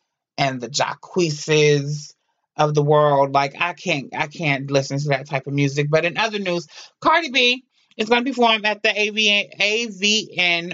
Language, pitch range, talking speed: English, 160-230 Hz, 175 wpm